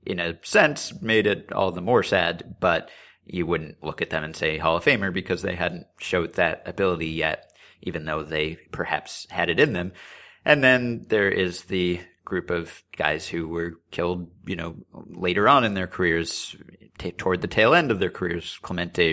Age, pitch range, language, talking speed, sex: 30-49, 85-100 Hz, English, 190 wpm, male